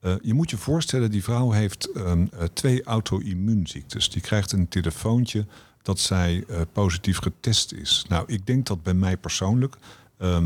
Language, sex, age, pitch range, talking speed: Dutch, male, 50-69, 90-120 Hz, 165 wpm